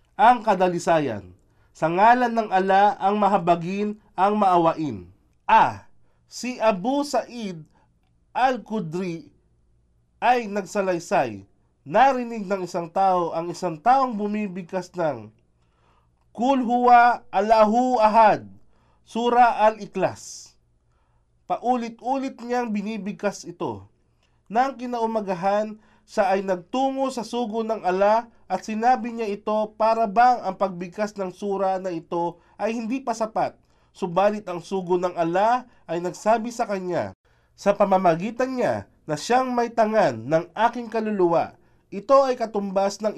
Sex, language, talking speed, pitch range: male, Filipino, 115 wpm, 175-230 Hz